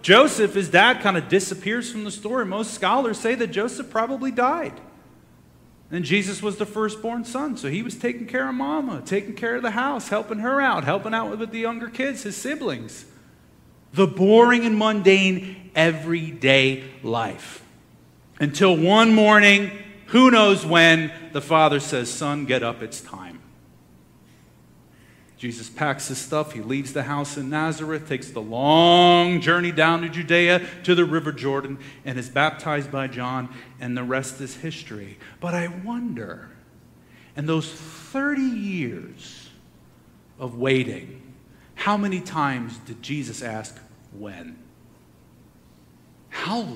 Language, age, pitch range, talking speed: English, 40-59, 135-220 Hz, 145 wpm